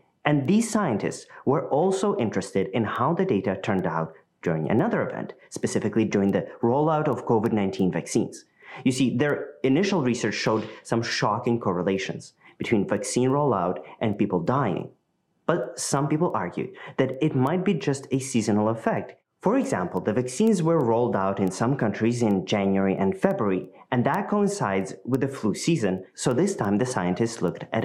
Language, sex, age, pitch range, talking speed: English, male, 30-49, 105-140 Hz, 165 wpm